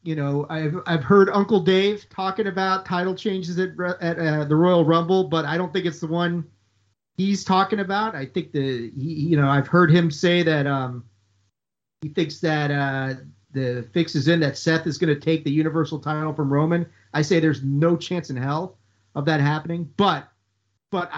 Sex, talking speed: male, 200 wpm